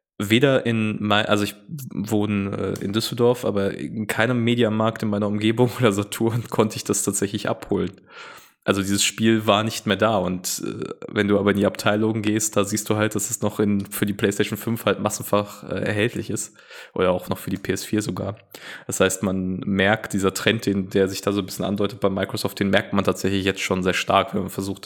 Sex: male